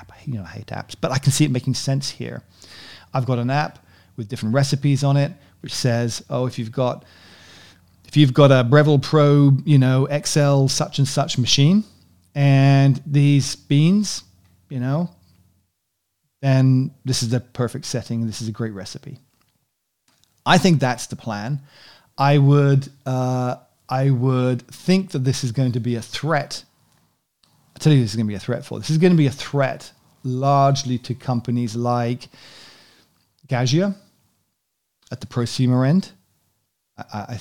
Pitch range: 115-140 Hz